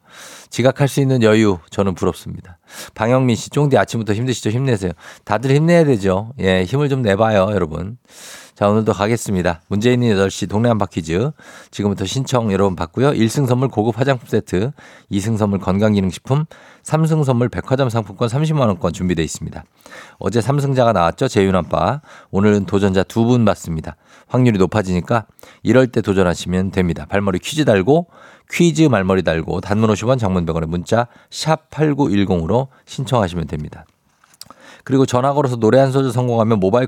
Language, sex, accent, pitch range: Korean, male, native, 95-135 Hz